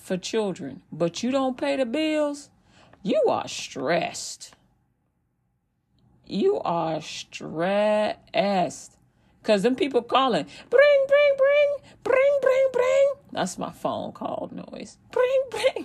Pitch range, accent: 215-310 Hz, American